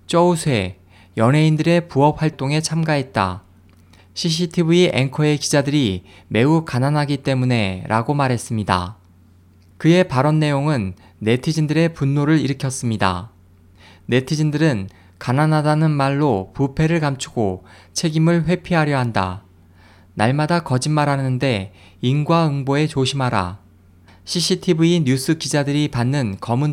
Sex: male